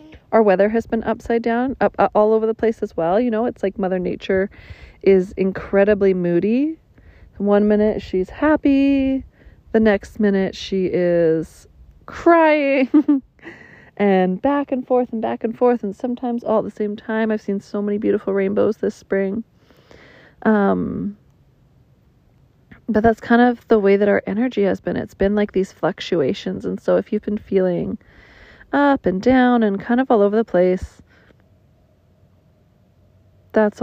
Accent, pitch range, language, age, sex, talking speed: American, 185-230 Hz, English, 30-49, female, 160 wpm